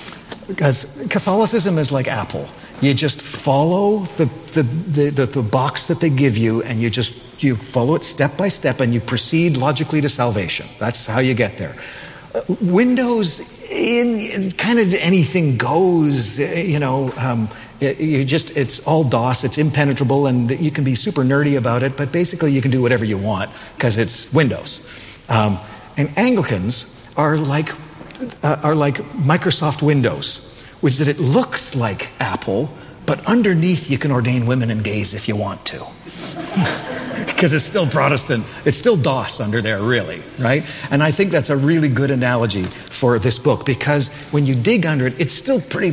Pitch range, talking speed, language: 120-155 Hz, 180 wpm, English